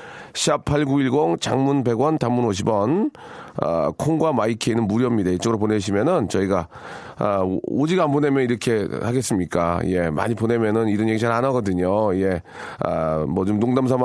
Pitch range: 110-140 Hz